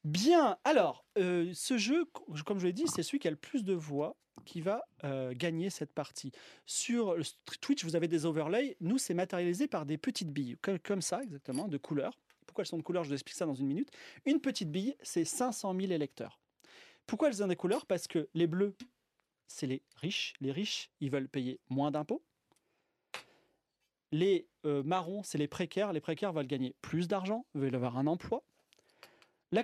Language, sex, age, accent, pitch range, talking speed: French, male, 30-49, French, 145-205 Hz, 200 wpm